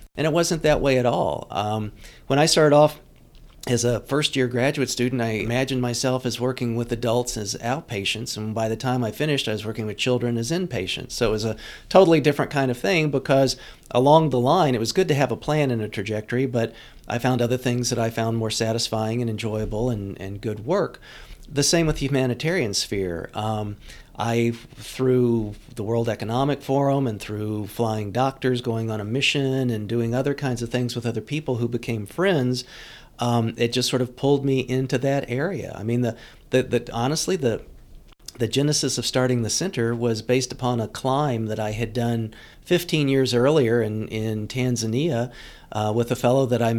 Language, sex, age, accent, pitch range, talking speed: English, male, 40-59, American, 115-135 Hz, 200 wpm